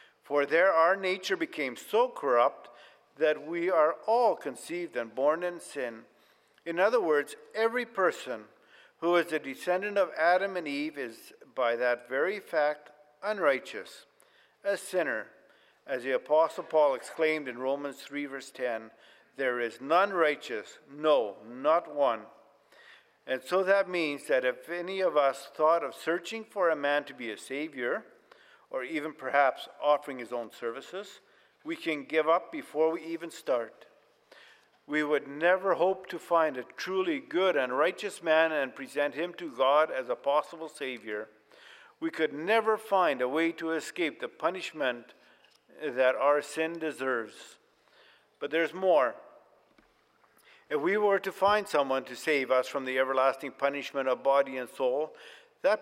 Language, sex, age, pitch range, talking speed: English, male, 50-69, 140-195 Hz, 155 wpm